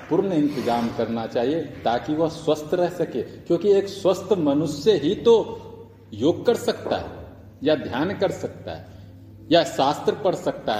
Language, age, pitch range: Hindi, 40-59, 115-180 Hz